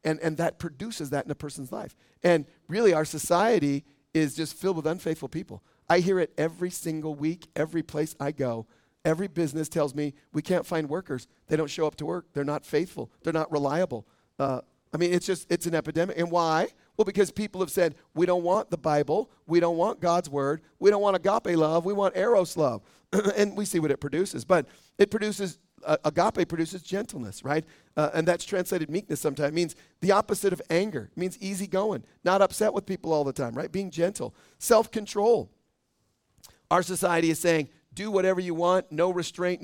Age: 40-59